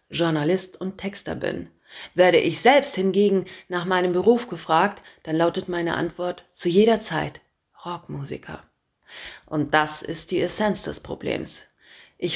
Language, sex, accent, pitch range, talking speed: German, female, German, 165-215 Hz, 135 wpm